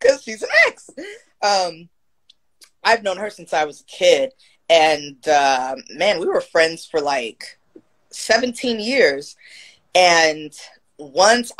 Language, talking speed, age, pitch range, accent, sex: English, 130 wpm, 20-39, 160-215 Hz, American, female